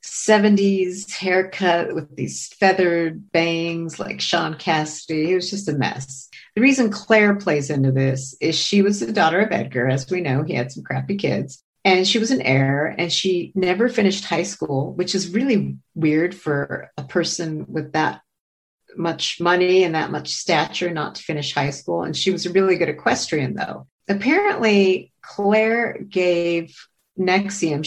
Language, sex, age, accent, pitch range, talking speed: English, female, 50-69, American, 155-195 Hz, 170 wpm